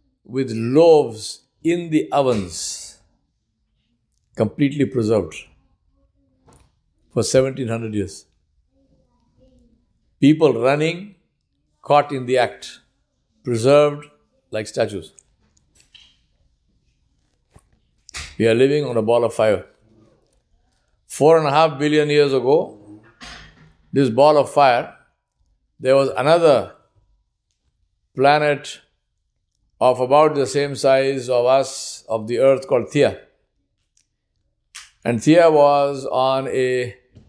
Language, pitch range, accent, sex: English, 110-145 Hz, Indian, male